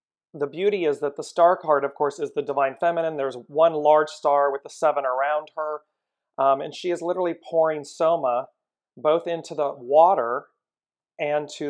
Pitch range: 140-180 Hz